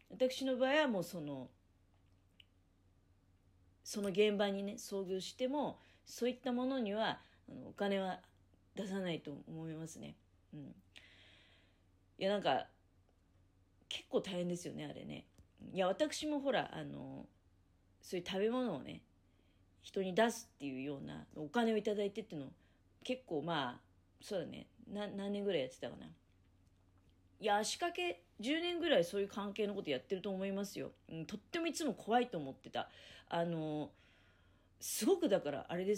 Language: Japanese